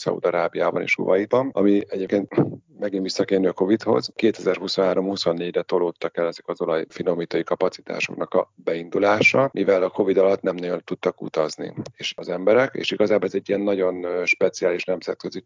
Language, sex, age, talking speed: Hungarian, male, 40-59, 140 wpm